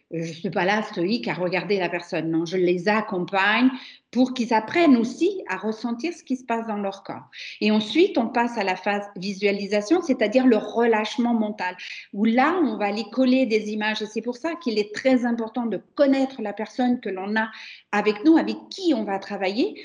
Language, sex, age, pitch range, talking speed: French, female, 50-69, 205-270 Hz, 210 wpm